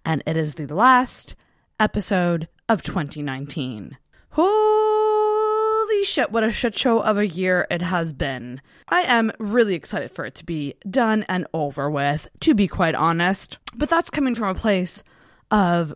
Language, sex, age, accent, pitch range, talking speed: English, female, 20-39, American, 180-255 Hz, 160 wpm